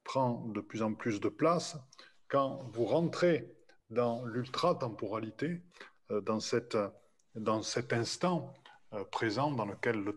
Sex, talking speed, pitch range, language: male, 125 wpm, 115-140 Hz, French